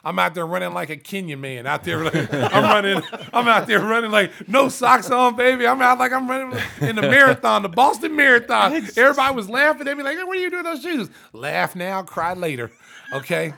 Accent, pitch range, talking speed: American, 150-220 Hz, 230 wpm